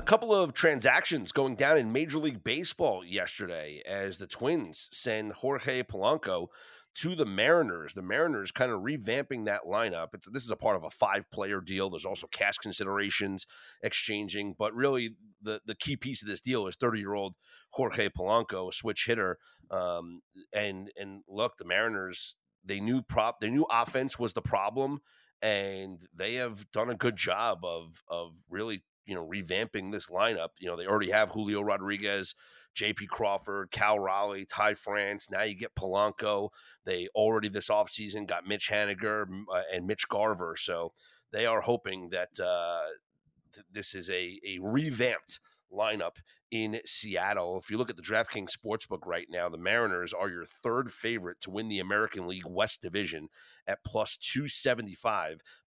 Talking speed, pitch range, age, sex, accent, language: 165 wpm, 95-115 Hz, 30-49, male, American, English